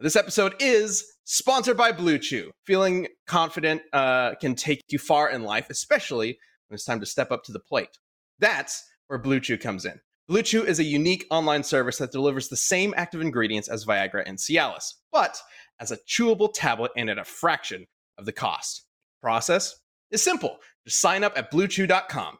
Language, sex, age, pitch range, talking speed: English, male, 30-49, 140-200 Hz, 185 wpm